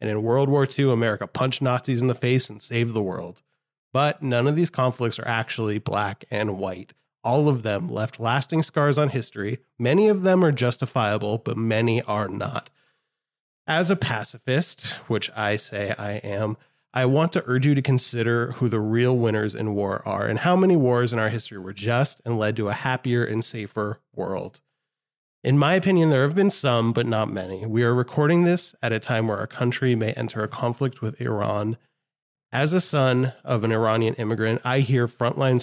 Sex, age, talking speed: male, 30-49, 195 wpm